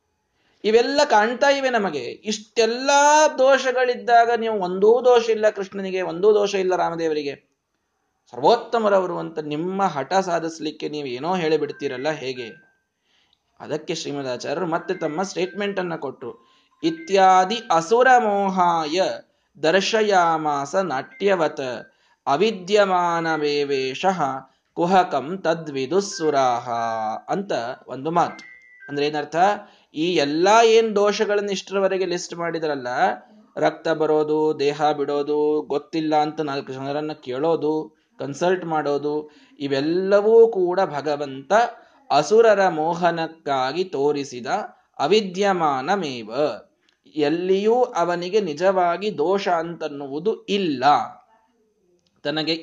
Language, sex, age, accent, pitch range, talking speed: Kannada, male, 20-39, native, 150-210 Hz, 90 wpm